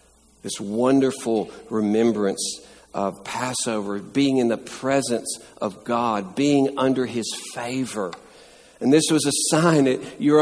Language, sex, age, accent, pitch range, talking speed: English, male, 60-79, American, 110-145 Hz, 125 wpm